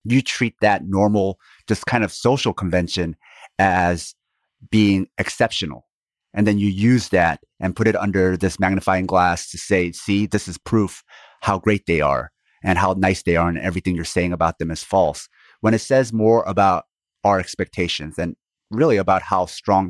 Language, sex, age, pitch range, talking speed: English, male, 30-49, 90-110 Hz, 180 wpm